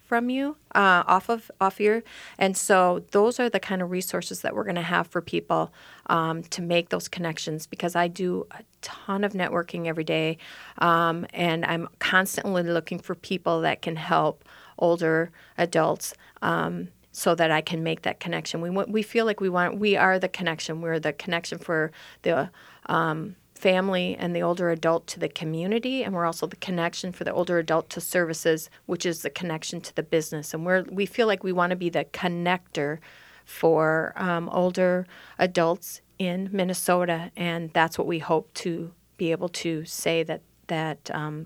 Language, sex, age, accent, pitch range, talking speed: English, female, 30-49, American, 160-185 Hz, 185 wpm